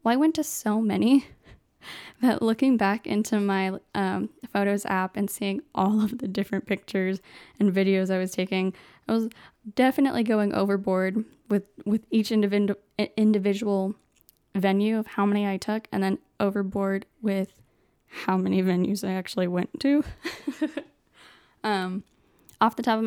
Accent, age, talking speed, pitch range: American, 10-29, 150 wpm, 195-235 Hz